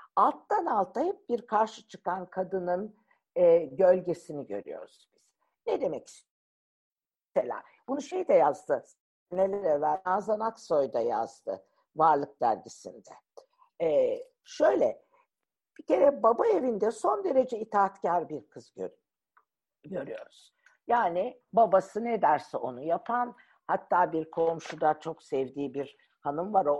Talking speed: 115 wpm